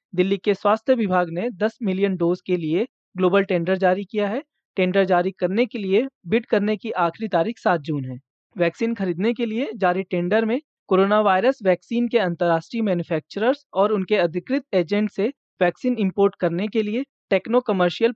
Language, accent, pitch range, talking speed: Hindi, native, 180-220 Hz, 170 wpm